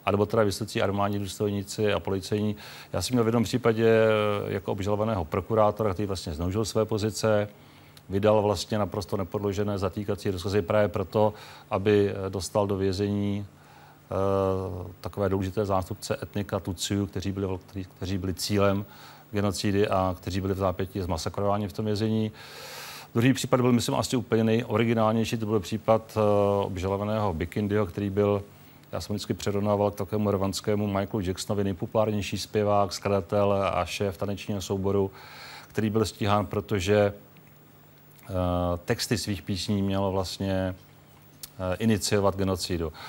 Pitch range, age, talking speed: 95-105 Hz, 40-59, 130 wpm